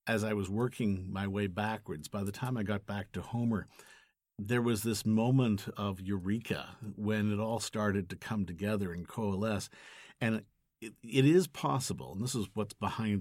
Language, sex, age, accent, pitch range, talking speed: English, male, 50-69, American, 95-115 Hz, 180 wpm